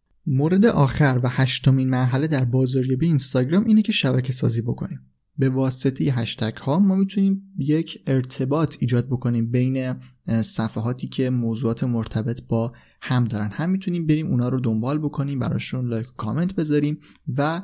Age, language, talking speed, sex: 20-39, Persian, 150 wpm, male